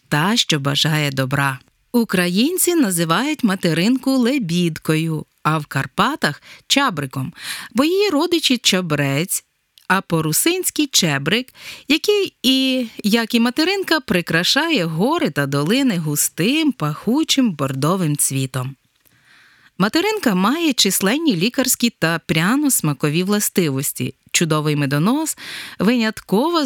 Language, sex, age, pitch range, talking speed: Ukrainian, female, 30-49, 160-265 Hz, 100 wpm